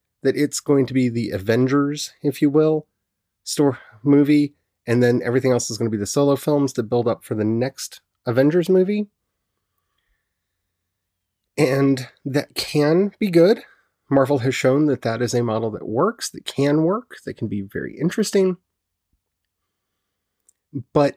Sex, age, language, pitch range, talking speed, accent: male, 30-49, English, 105-150 Hz, 155 wpm, American